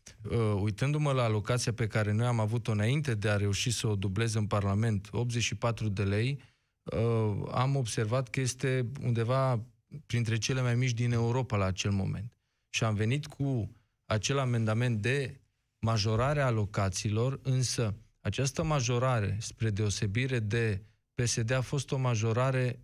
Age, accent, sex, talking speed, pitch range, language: 20-39, native, male, 150 wpm, 110-130 Hz, Romanian